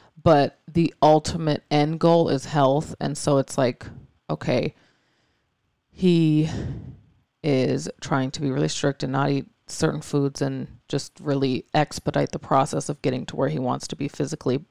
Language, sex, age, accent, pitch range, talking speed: English, female, 30-49, American, 135-155 Hz, 160 wpm